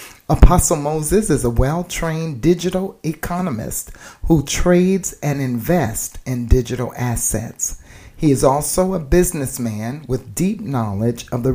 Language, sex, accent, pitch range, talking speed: English, male, American, 115-145 Hz, 125 wpm